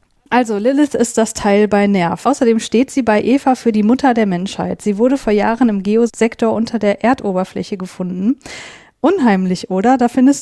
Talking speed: 180 wpm